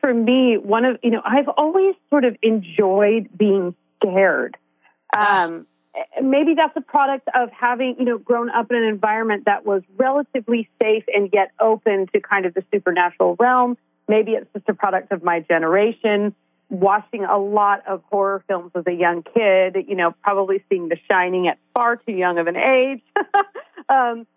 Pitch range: 195-255 Hz